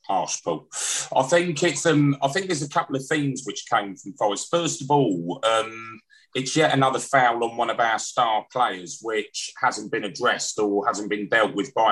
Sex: male